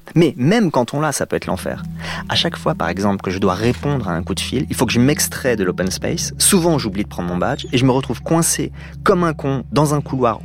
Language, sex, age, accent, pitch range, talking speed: French, male, 30-49, French, 100-140 Hz, 275 wpm